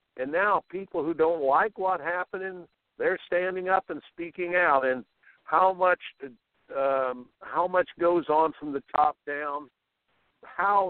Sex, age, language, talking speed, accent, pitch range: male, 60-79, English, 150 wpm, American, 135-185 Hz